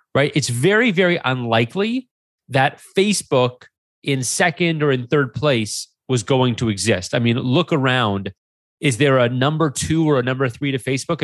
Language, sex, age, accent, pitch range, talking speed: English, male, 30-49, American, 120-165 Hz, 170 wpm